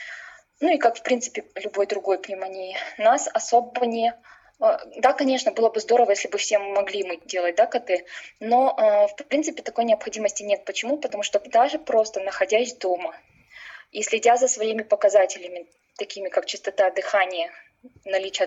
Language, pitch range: Russian, 195-280 Hz